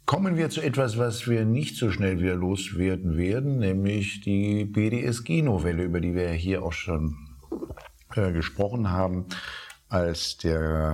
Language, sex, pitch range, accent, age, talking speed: German, male, 85-105 Hz, German, 50-69, 145 wpm